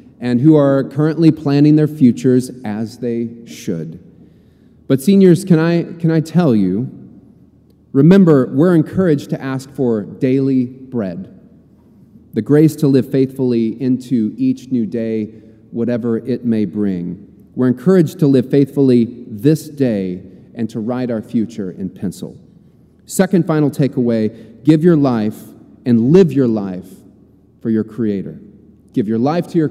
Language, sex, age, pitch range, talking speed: English, male, 40-59, 115-155 Hz, 140 wpm